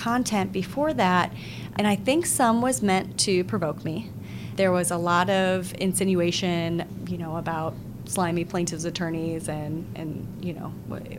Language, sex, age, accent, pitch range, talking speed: English, female, 30-49, American, 170-195 Hz, 155 wpm